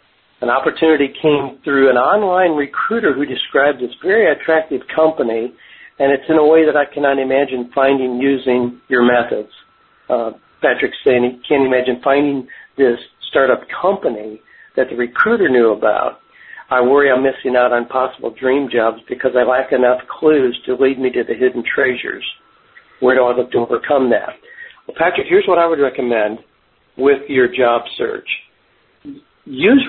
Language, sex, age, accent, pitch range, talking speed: English, male, 60-79, American, 125-170 Hz, 165 wpm